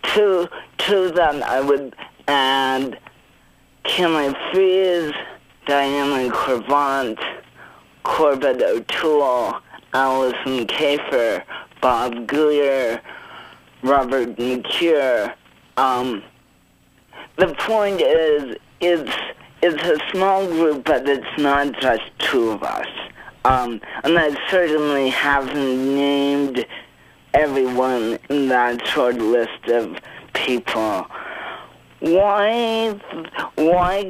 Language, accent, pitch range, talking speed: English, American, 125-160 Hz, 85 wpm